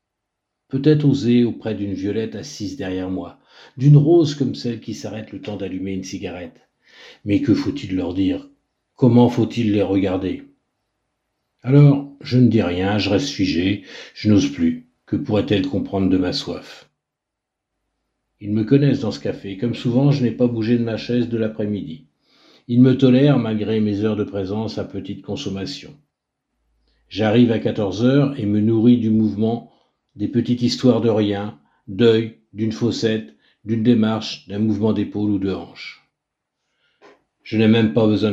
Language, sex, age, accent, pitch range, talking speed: French, male, 60-79, French, 100-120 Hz, 160 wpm